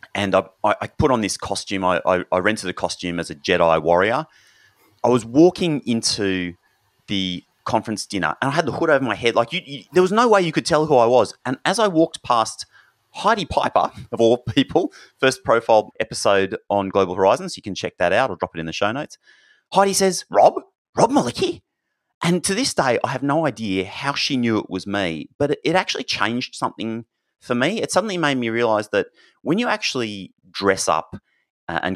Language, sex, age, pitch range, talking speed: English, male, 30-49, 100-155 Hz, 205 wpm